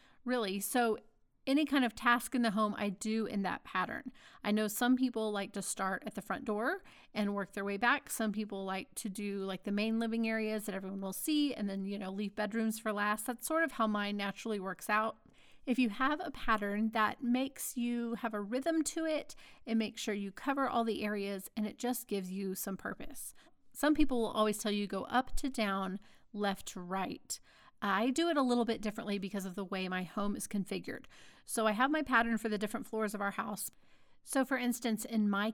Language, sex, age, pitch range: English, female, 30-49, 200-245 Hz